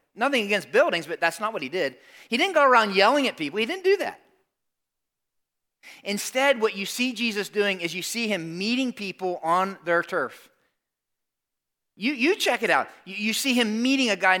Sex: male